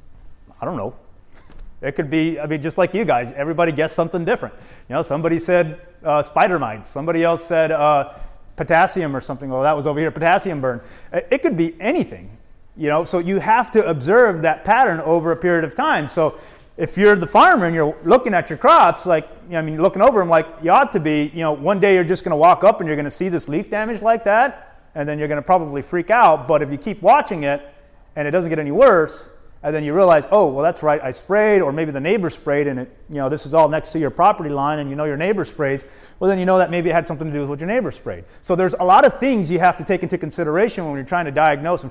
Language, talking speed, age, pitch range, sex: English, 265 wpm, 30-49, 145-180 Hz, male